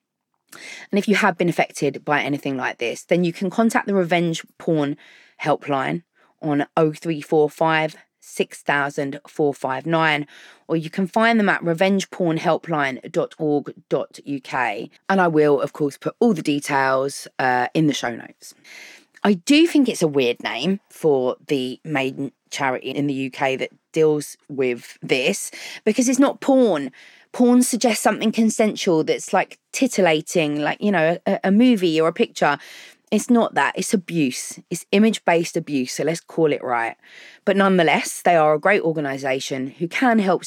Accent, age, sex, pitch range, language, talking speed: British, 20-39, female, 140-190 Hz, English, 155 wpm